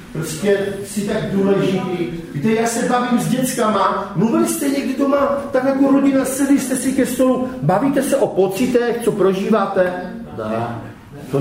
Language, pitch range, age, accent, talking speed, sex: Czech, 175-250 Hz, 40-59, native, 165 wpm, male